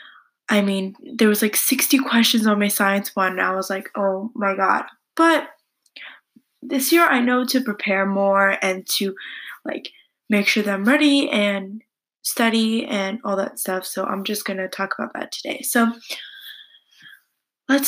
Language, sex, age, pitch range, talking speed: English, female, 10-29, 195-255 Hz, 170 wpm